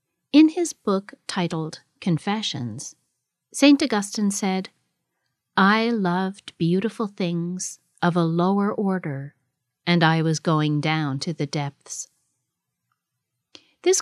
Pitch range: 150-210 Hz